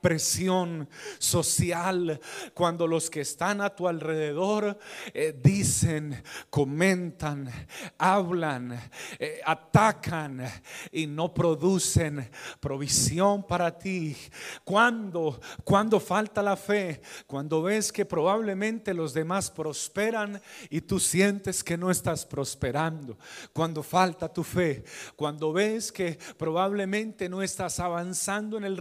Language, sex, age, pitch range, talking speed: Spanish, male, 40-59, 155-195 Hz, 110 wpm